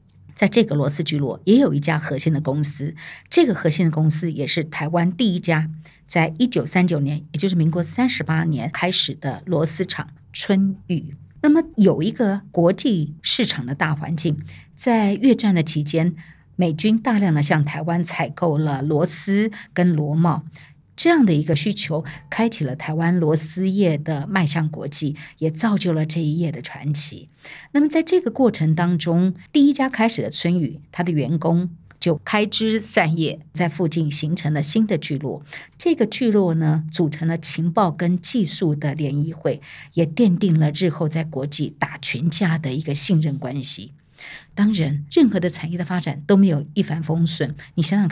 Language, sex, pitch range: Chinese, female, 150-185 Hz